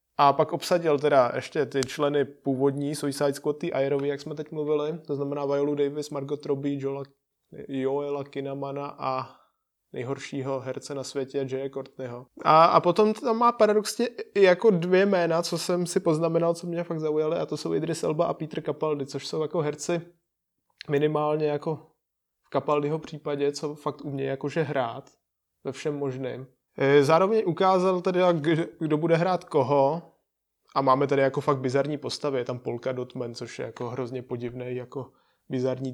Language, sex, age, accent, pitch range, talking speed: Czech, male, 20-39, native, 130-150 Hz, 165 wpm